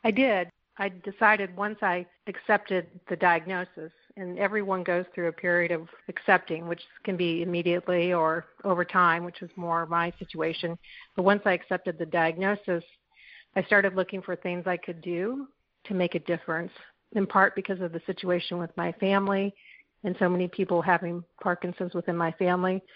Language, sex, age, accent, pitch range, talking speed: English, female, 40-59, American, 175-195 Hz, 170 wpm